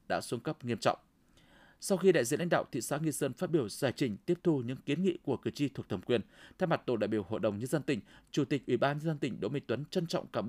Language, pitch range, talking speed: Vietnamese, 125-170 Hz, 305 wpm